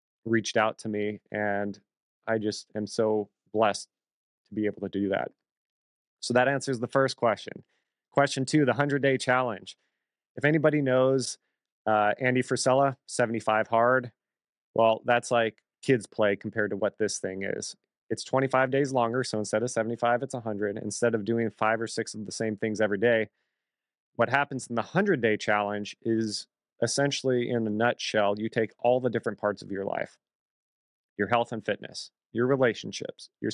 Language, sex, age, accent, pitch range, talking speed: English, male, 30-49, American, 105-125 Hz, 175 wpm